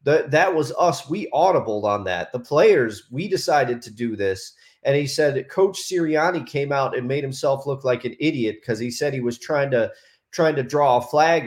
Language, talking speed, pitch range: English, 215 wpm, 120-160 Hz